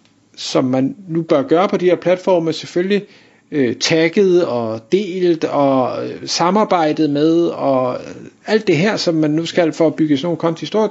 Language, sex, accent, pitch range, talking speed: Danish, male, native, 150-210 Hz, 170 wpm